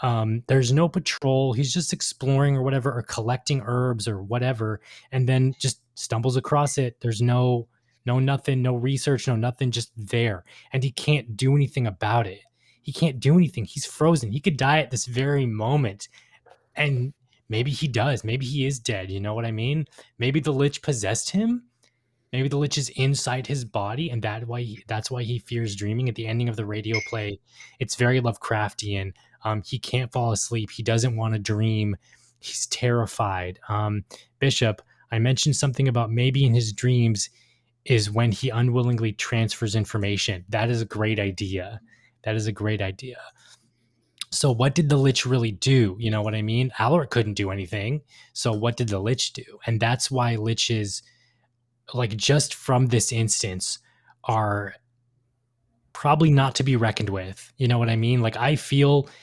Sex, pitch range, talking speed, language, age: male, 110-135 Hz, 180 wpm, English, 20-39